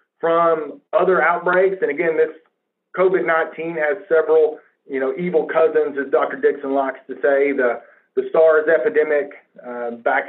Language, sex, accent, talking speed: English, male, American, 150 wpm